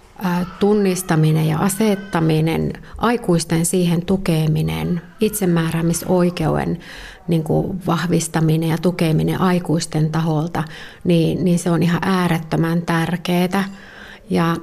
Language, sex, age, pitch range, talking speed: Finnish, female, 30-49, 170-195 Hz, 85 wpm